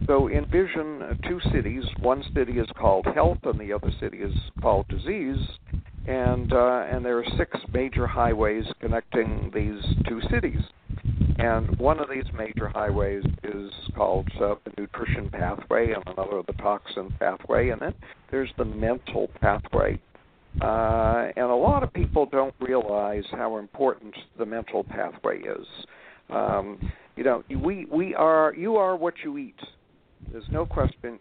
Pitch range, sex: 110-135 Hz, male